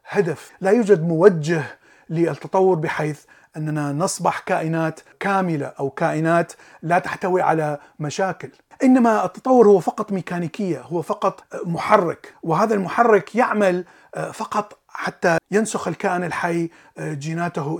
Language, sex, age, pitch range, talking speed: Arabic, male, 30-49, 155-200 Hz, 110 wpm